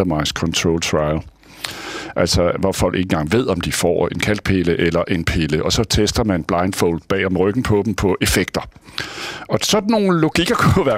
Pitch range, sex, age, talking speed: 95-145 Hz, male, 60-79, 180 wpm